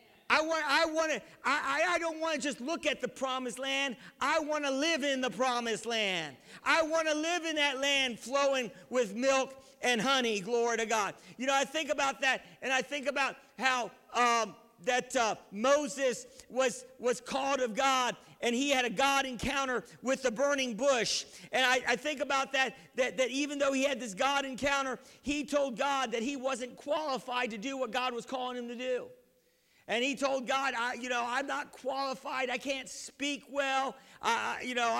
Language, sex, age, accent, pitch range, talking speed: English, male, 50-69, American, 250-285 Hz, 200 wpm